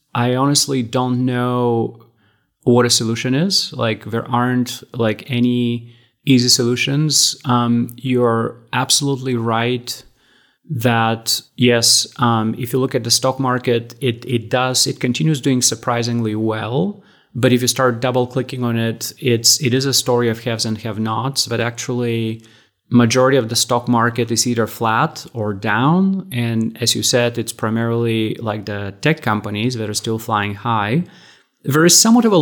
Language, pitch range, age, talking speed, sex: Bulgarian, 115-130 Hz, 30-49, 160 wpm, male